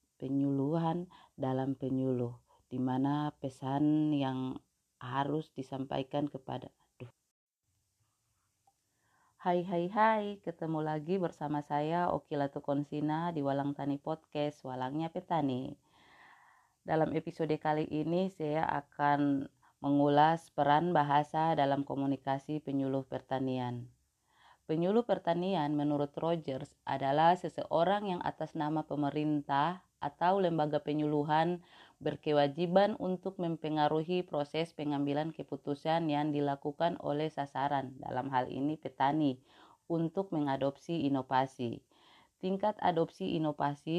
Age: 30-49